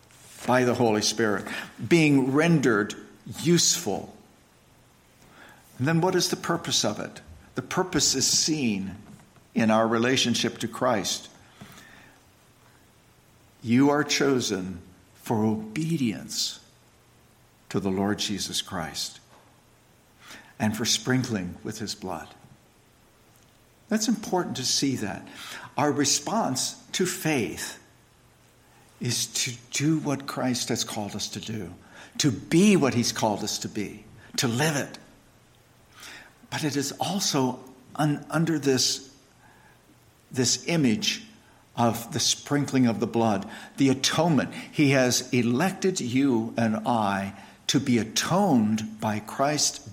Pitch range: 110-145 Hz